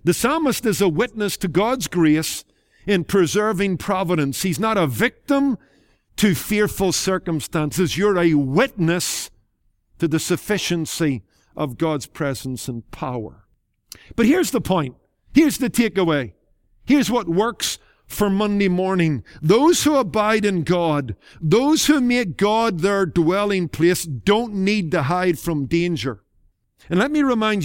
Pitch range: 145-210 Hz